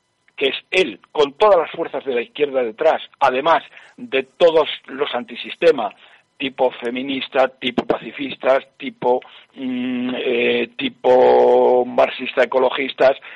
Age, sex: 60-79, male